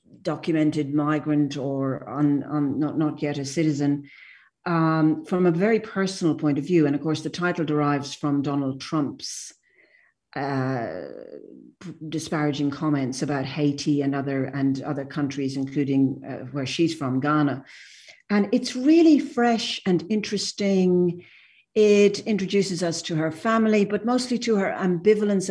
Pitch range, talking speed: 145-175 Hz, 135 wpm